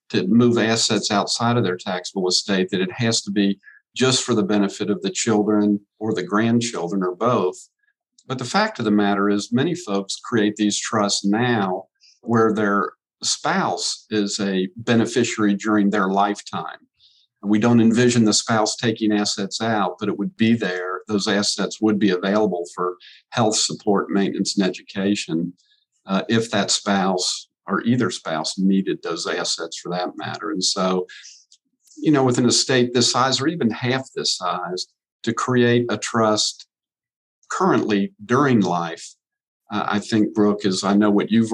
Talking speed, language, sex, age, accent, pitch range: 165 wpm, English, male, 50-69, American, 100-120 Hz